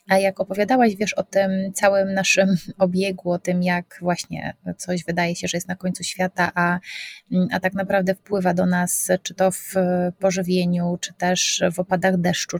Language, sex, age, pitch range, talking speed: Polish, female, 20-39, 180-195 Hz, 175 wpm